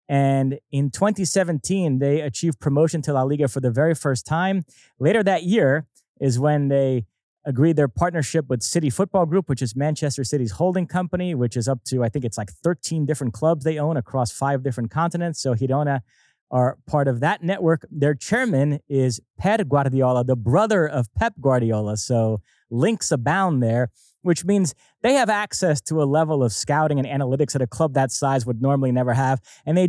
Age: 20-39